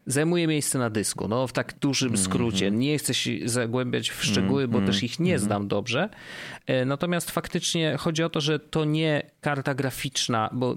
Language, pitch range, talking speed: Polish, 115-145 Hz, 180 wpm